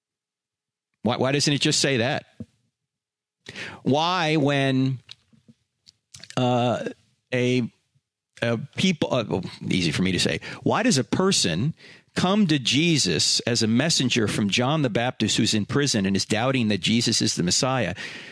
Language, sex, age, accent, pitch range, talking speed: English, male, 50-69, American, 115-165 Hz, 145 wpm